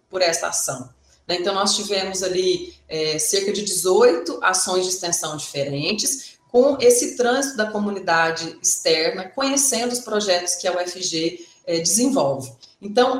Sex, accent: female, Brazilian